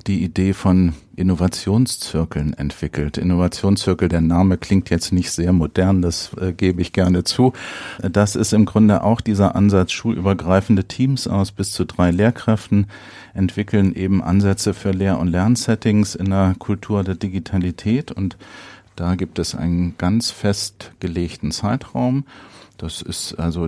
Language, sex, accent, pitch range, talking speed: German, male, German, 85-100 Hz, 140 wpm